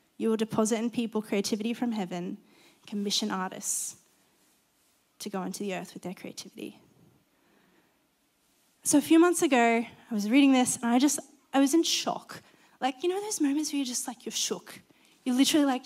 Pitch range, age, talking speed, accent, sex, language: 200-255 Hz, 10-29, 180 wpm, Australian, female, English